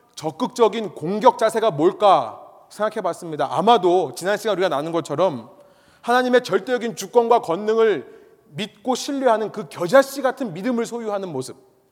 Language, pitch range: Korean, 150-225 Hz